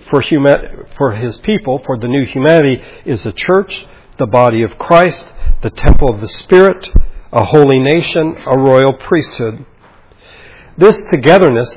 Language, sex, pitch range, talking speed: English, male, 130-165 Hz, 140 wpm